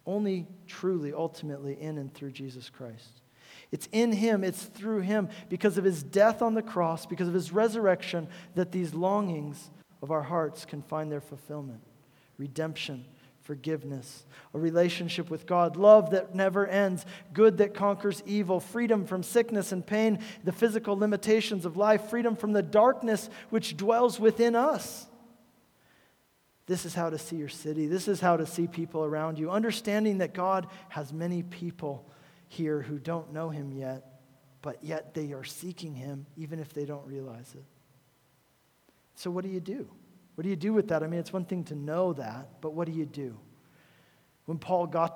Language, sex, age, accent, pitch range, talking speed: English, male, 40-59, American, 145-195 Hz, 175 wpm